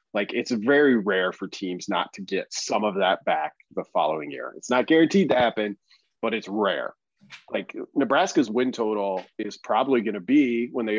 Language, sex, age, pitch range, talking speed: English, male, 30-49, 100-135 Hz, 190 wpm